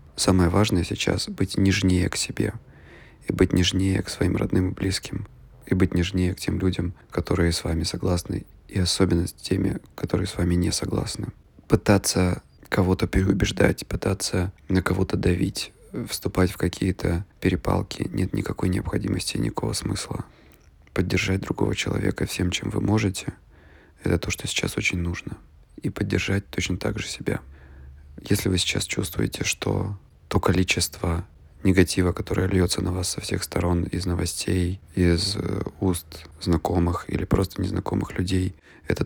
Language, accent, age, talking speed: Russian, native, 20-39, 145 wpm